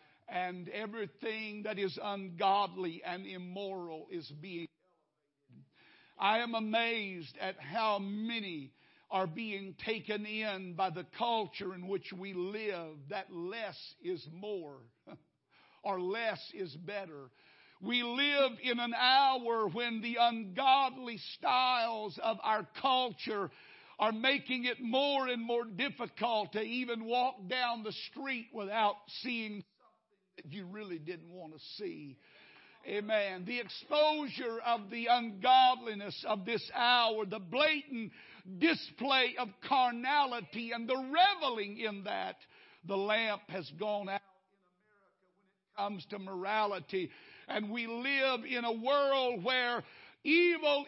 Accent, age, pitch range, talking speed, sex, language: American, 60-79, 190-245 Hz, 125 wpm, male, English